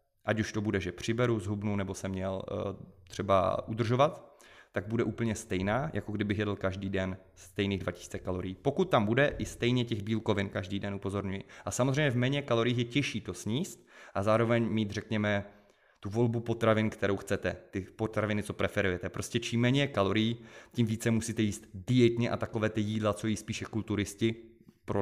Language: Czech